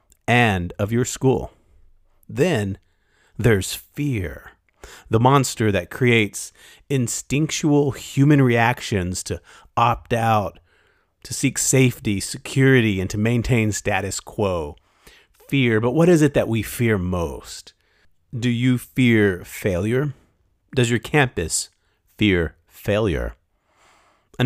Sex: male